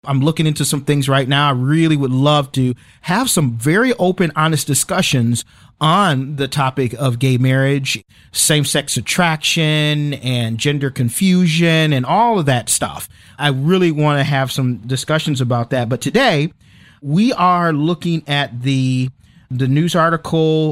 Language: English